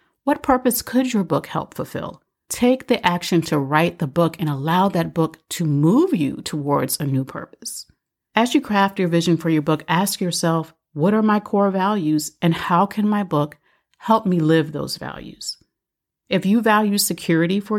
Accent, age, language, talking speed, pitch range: American, 40-59, English, 185 wpm, 160-205 Hz